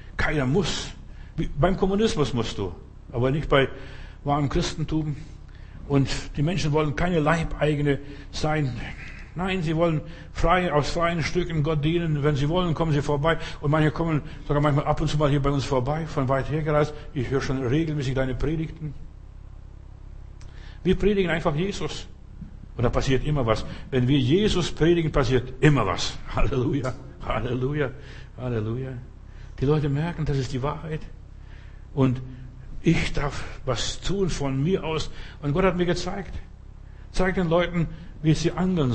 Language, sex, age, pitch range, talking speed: German, male, 60-79, 130-170 Hz, 155 wpm